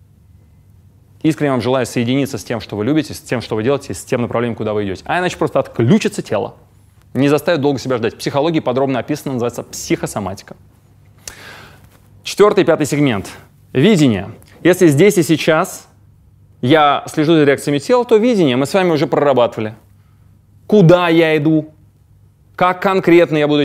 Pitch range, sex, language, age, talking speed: 115-165 Hz, male, Russian, 20-39, 155 wpm